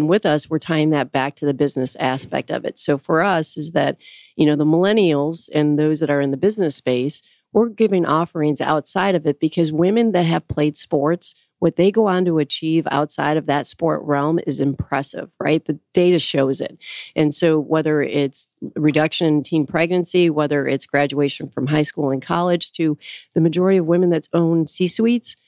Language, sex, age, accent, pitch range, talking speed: English, female, 40-59, American, 150-175 Hz, 200 wpm